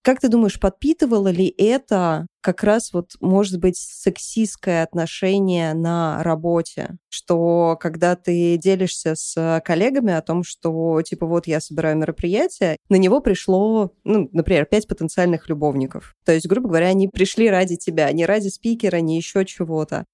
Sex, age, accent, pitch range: female, 20-39, native, 165-200 Hz